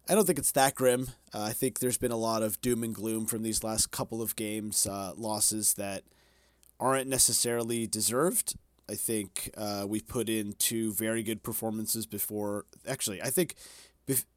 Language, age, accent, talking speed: English, 30-49, American, 185 wpm